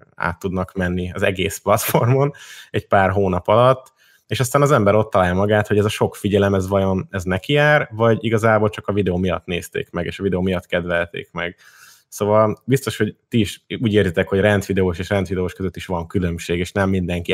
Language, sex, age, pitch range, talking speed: Hungarian, male, 20-39, 95-110 Hz, 205 wpm